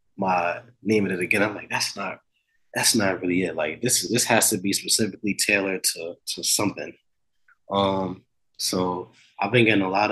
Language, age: English, 20-39